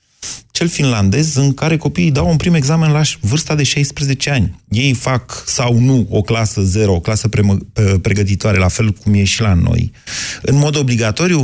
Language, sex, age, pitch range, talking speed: Romanian, male, 30-49, 105-145 Hz, 180 wpm